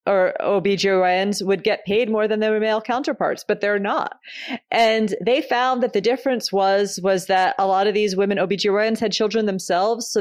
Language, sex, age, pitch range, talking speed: English, female, 30-49, 180-240 Hz, 190 wpm